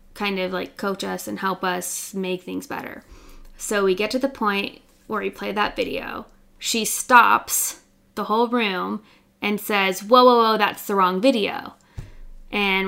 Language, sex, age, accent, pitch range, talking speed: English, female, 10-29, American, 190-225 Hz, 170 wpm